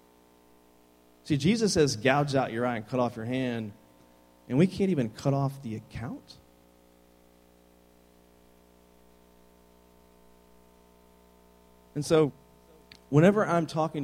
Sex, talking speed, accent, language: male, 105 wpm, American, English